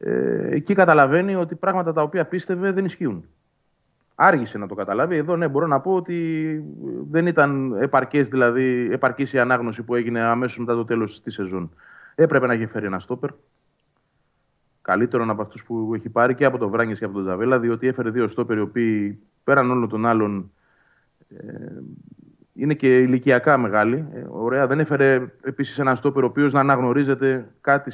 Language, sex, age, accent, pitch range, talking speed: Greek, male, 30-49, native, 115-150 Hz, 170 wpm